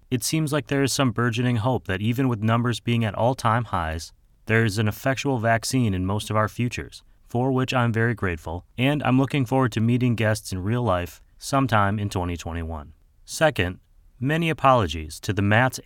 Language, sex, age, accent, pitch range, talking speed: English, male, 30-49, American, 95-125 Hz, 190 wpm